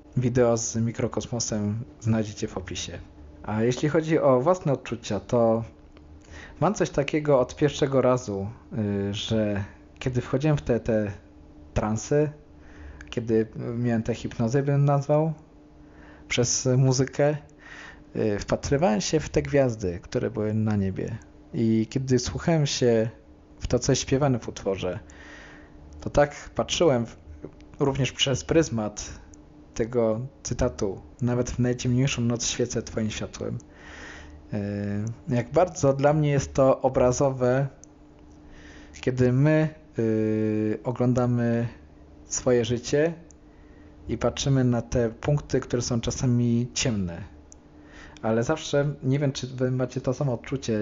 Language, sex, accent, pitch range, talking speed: Polish, male, native, 100-130 Hz, 120 wpm